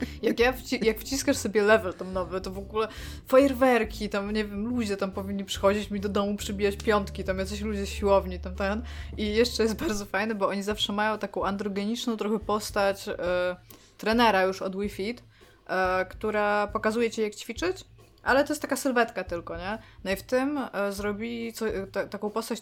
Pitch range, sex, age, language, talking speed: 190-225 Hz, female, 20-39, Polish, 195 wpm